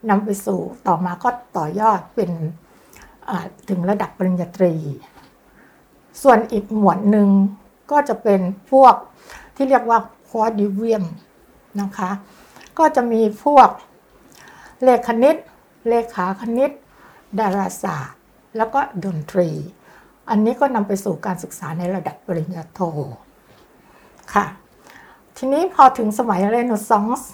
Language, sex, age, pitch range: English, female, 60-79, 190-245 Hz